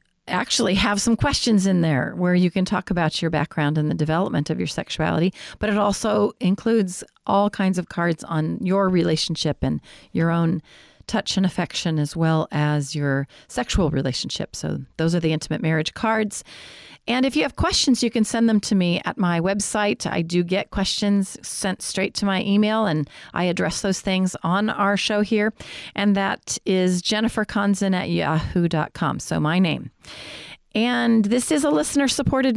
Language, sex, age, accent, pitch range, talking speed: English, female, 40-59, American, 165-220 Hz, 175 wpm